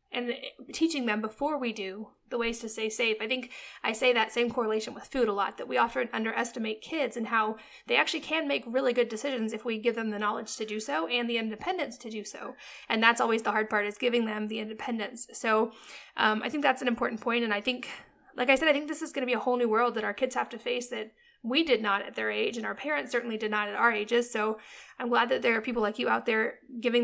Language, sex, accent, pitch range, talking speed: English, female, American, 220-250 Hz, 270 wpm